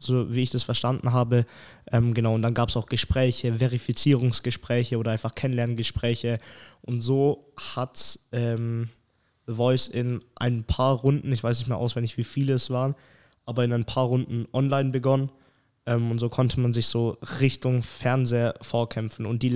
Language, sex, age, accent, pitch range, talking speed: German, male, 20-39, German, 115-130 Hz, 170 wpm